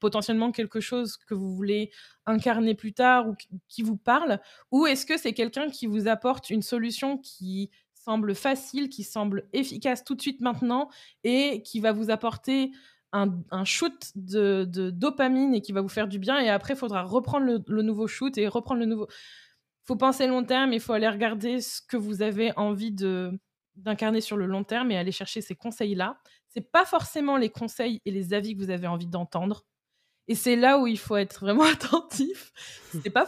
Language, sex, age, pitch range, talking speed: French, female, 20-39, 205-255 Hz, 205 wpm